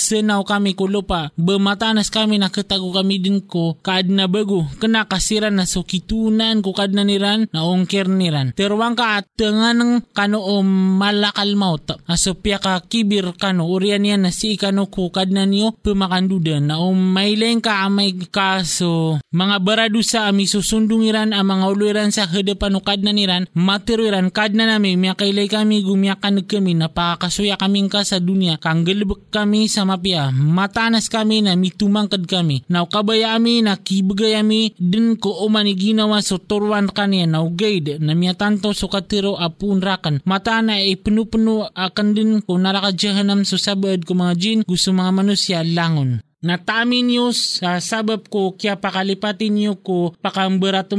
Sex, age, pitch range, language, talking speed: male, 20-39, 185-210 Hz, English, 145 wpm